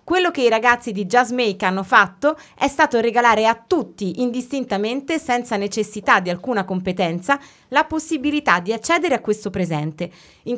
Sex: female